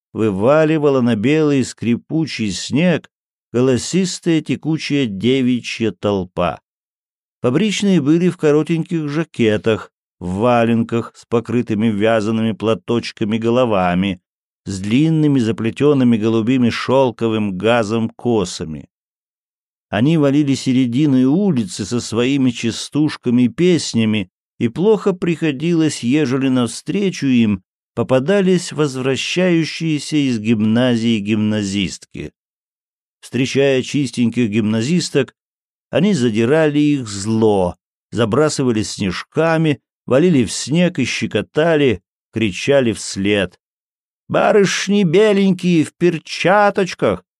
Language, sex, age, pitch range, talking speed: Russian, male, 50-69, 110-155 Hz, 85 wpm